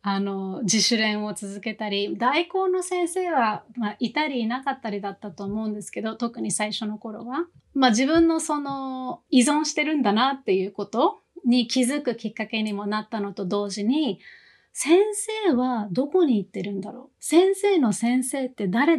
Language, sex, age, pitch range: Japanese, female, 30-49, 210-290 Hz